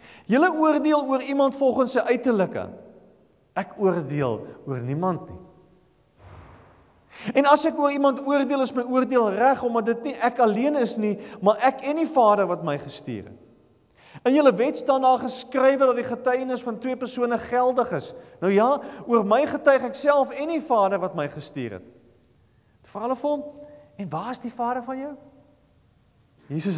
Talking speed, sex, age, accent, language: 170 wpm, male, 40-59, Dutch, English